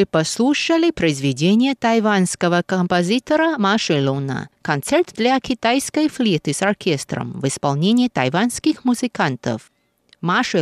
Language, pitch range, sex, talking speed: Russian, 175-260 Hz, female, 100 wpm